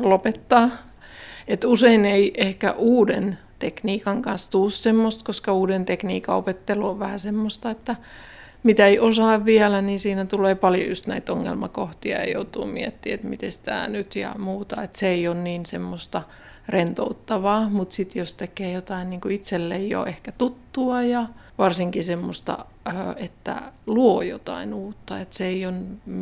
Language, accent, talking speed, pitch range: Finnish, native, 150 wpm, 175-215 Hz